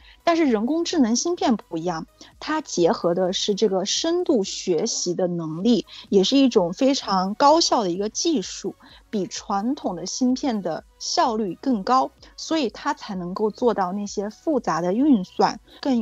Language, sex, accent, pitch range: Chinese, female, native, 195-270 Hz